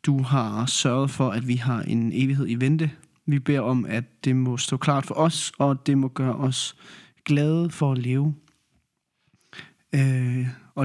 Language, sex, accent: Danish, male, native